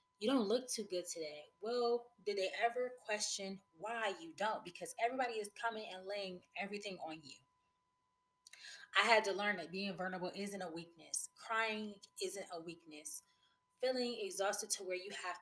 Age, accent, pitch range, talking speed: 20-39, American, 175-240 Hz, 165 wpm